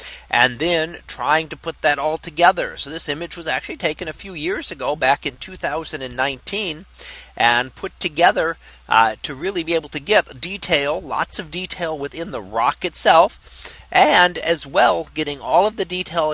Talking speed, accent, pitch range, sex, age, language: 175 wpm, American, 140-200 Hz, male, 40-59, English